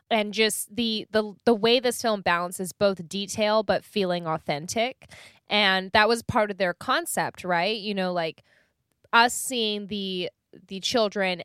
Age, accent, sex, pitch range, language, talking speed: 10-29, American, female, 165-210 Hz, English, 155 wpm